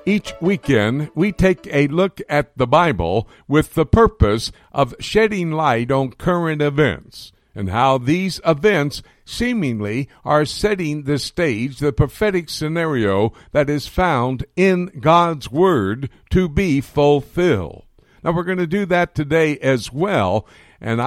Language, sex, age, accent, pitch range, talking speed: English, male, 60-79, American, 120-165 Hz, 140 wpm